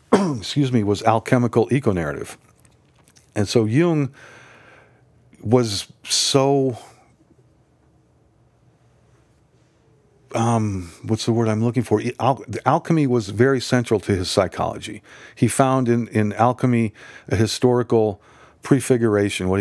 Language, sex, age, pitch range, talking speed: English, male, 50-69, 105-125 Hz, 105 wpm